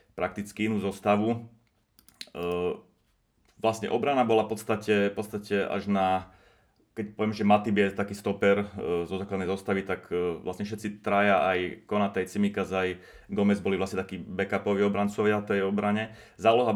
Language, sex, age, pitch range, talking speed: Slovak, male, 30-49, 95-105 Hz, 145 wpm